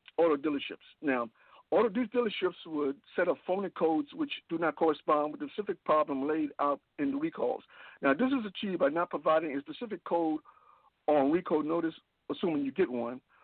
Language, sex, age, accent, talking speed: English, male, 60-79, American, 180 wpm